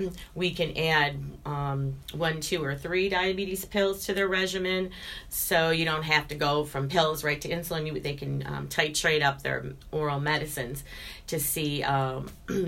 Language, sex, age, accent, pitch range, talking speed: English, female, 40-59, American, 145-180 Hz, 165 wpm